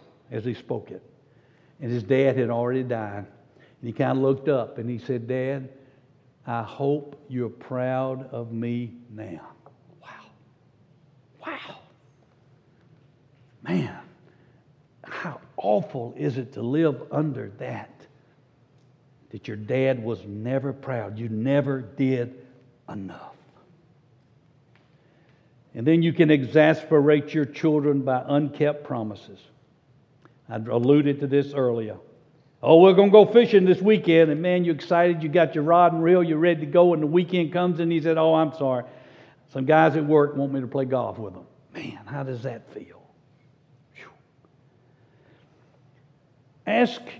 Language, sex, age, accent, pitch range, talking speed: English, male, 60-79, American, 130-160 Hz, 140 wpm